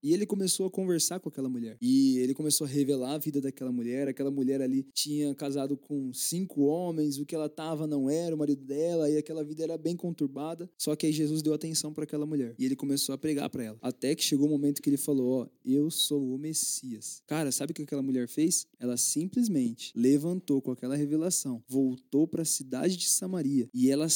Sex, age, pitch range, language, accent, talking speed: male, 20-39, 145-195 Hz, Portuguese, Brazilian, 230 wpm